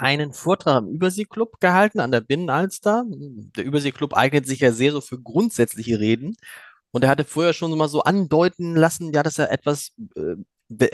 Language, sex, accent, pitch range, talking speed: German, male, German, 130-175 Hz, 170 wpm